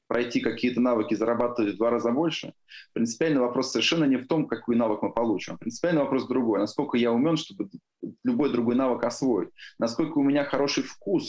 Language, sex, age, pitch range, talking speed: Russian, male, 20-39, 115-155 Hz, 180 wpm